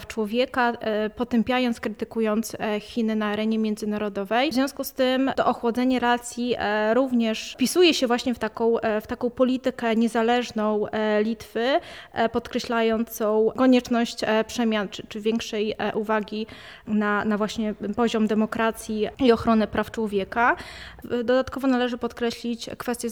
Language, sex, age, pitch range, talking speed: Polish, female, 20-39, 215-245 Hz, 115 wpm